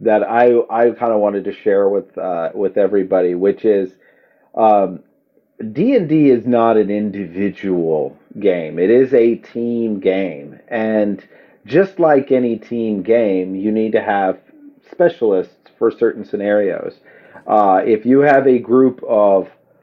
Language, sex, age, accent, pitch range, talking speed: English, male, 40-59, American, 105-125 Hz, 140 wpm